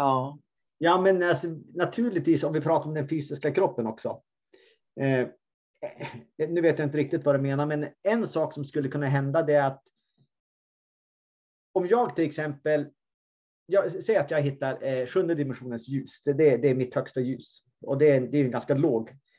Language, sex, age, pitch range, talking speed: Swedish, male, 30-49, 130-170 Hz, 185 wpm